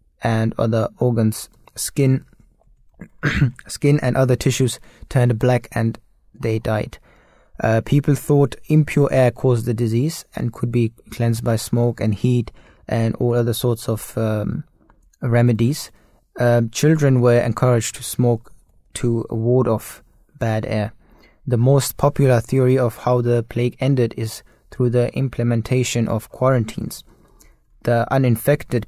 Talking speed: 135 wpm